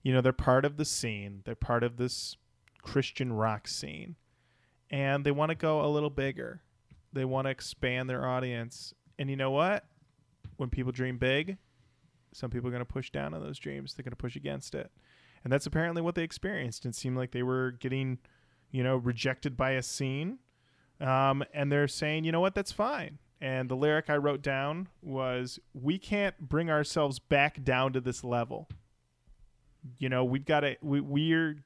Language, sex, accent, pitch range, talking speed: English, male, American, 125-150 Hz, 195 wpm